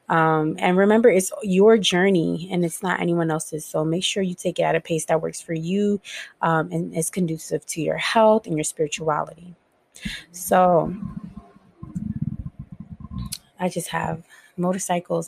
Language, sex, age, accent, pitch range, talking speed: English, female, 20-39, American, 165-190 Hz, 155 wpm